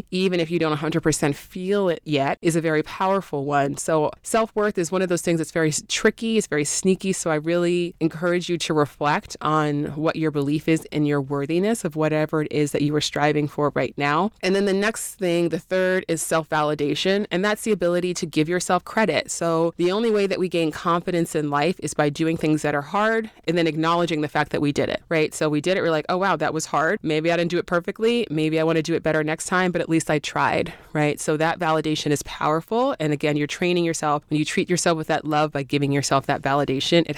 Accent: American